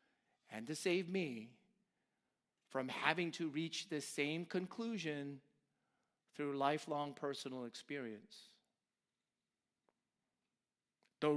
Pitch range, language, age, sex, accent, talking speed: 150-210 Hz, English, 40-59, male, American, 85 wpm